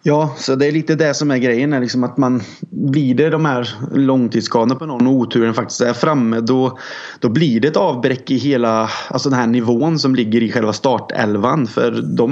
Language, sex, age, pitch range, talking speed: Swedish, male, 20-39, 115-135 Hz, 205 wpm